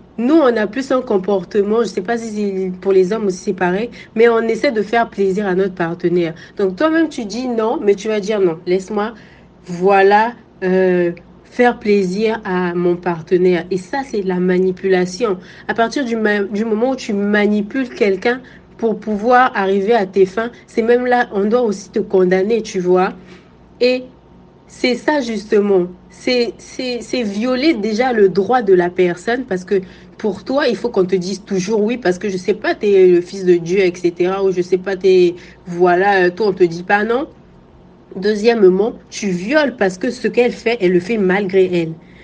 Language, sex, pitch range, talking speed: French, female, 185-230 Hz, 205 wpm